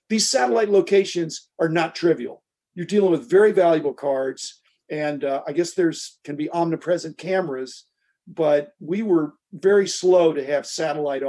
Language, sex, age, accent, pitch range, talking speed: English, male, 50-69, American, 155-205 Hz, 155 wpm